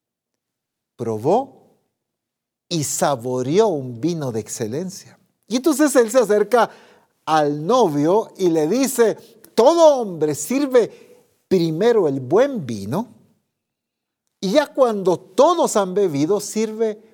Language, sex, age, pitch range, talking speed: Spanish, male, 50-69, 130-205 Hz, 110 wpm